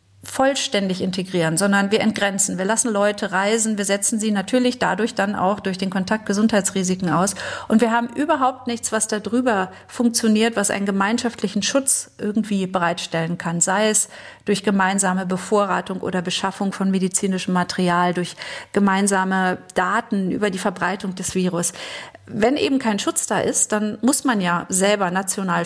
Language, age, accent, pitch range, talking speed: German, 40-59, German, 185-225 Hz, 155 wpm